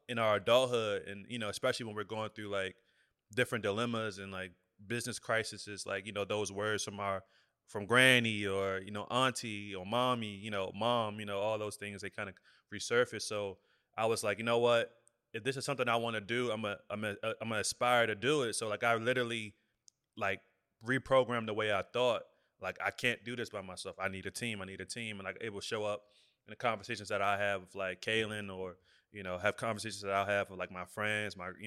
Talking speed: 235 wpm